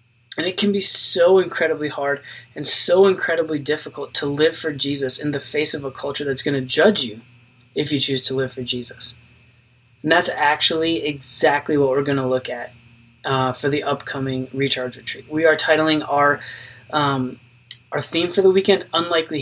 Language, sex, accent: English, male, American